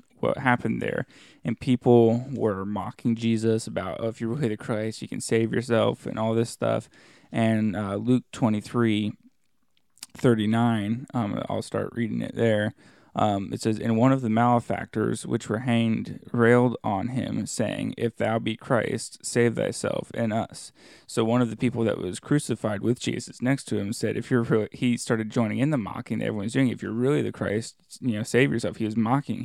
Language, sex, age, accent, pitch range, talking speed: English, male, 20-39, American, 110-125 Hz, 195 wpm